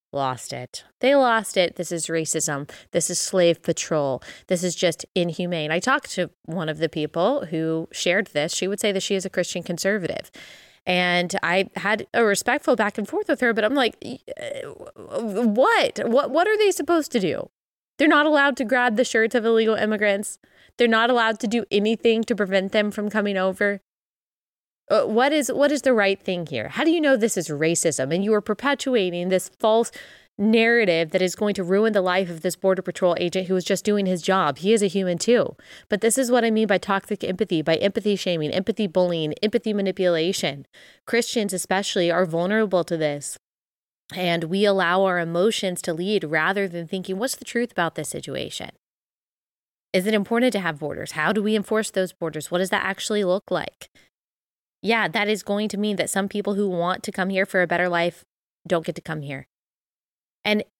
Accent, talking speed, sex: American, 200 wpm, female